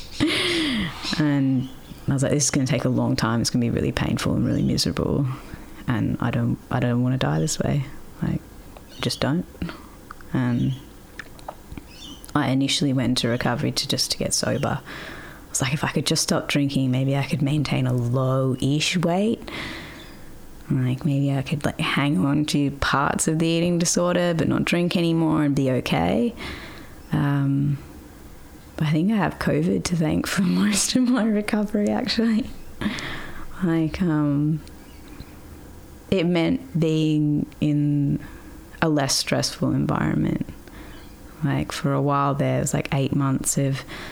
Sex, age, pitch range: female, 20-39, 135-160 Hz